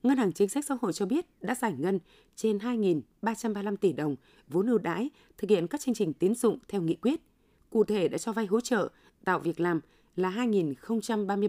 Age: 20-39